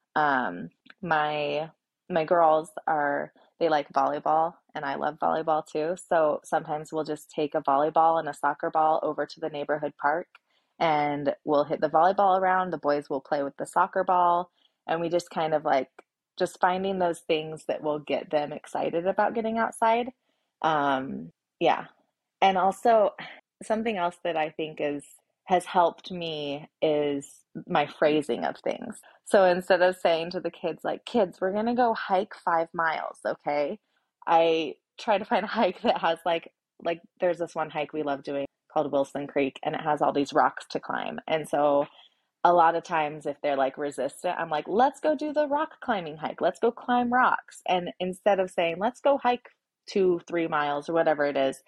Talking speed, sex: 185 wpm, female